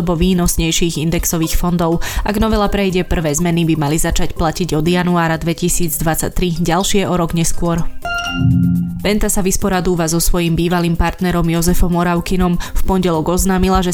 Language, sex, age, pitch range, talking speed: Slovak, female, 20-39, 170-185 Hz, 140 wpm